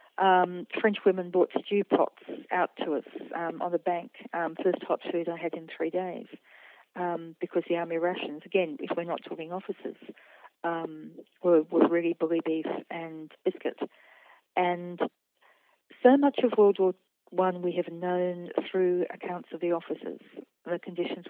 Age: 40-59